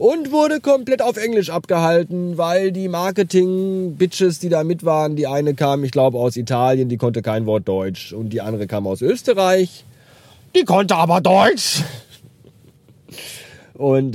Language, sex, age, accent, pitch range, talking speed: German, male, 30-49, German, 120-170 Hz, 155 wpm